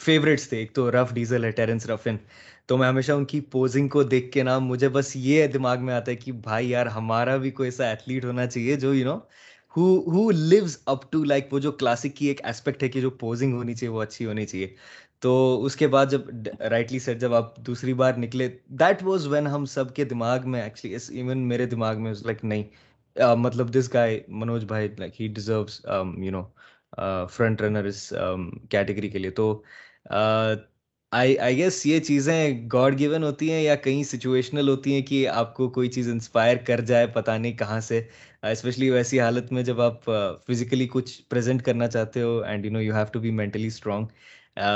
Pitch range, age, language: 115-135 Hz, 20-39, Urdu